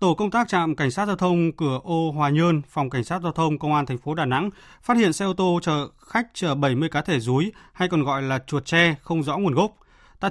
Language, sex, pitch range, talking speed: Vietnamese, male, 140-185 Hz, 270 wpm